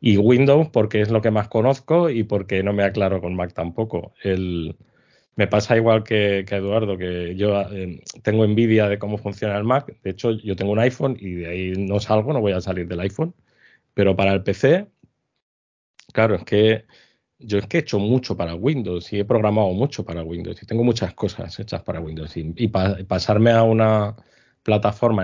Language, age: Spanish, 20-39